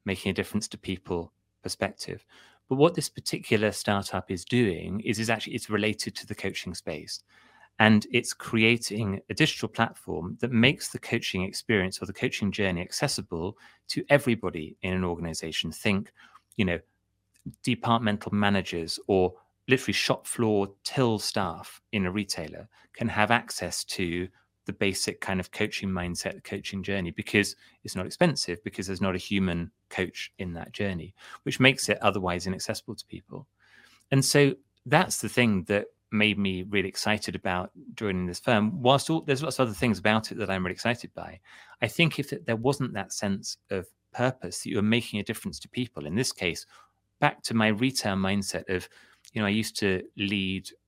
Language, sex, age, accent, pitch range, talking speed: English, male, 30-49, British, 95-115 Hz, 175 wpm